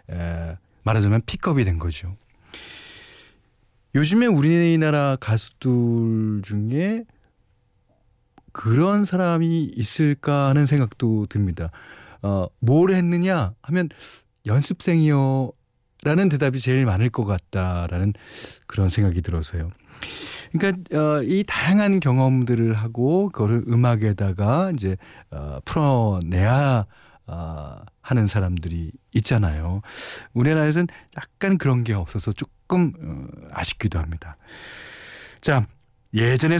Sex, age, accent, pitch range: male, 40-59, native, 100-150 Hz